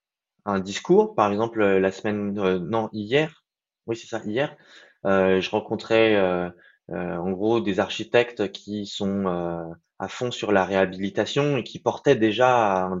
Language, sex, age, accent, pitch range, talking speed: French, male, 20-39, French, 100-130 Hz, 160 wpm